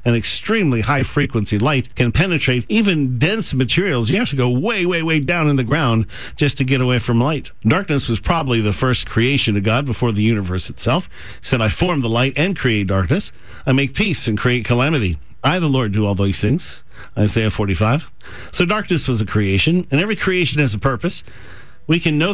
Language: English